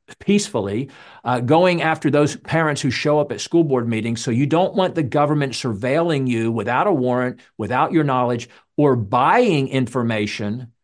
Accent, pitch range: American, 120-150 Hz